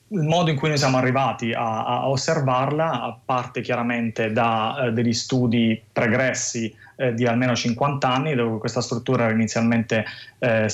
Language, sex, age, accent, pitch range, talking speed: Italian, male, 20-39, native, 115-130 Hz, 160 wpm